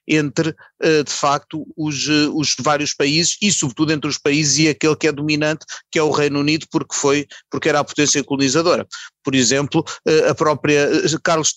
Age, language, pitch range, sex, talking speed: 30-49, Portuguese, 135-155 Hz, male, 175 wpm